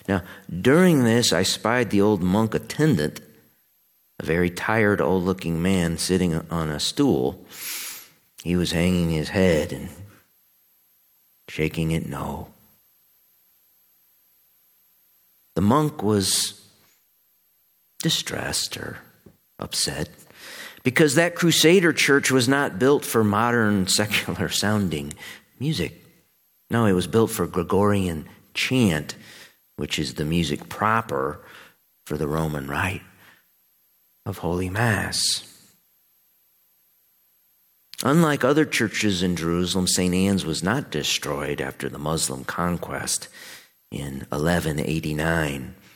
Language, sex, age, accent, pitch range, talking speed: English, male, 50-69, American, 80-105 Hz, 105 wpm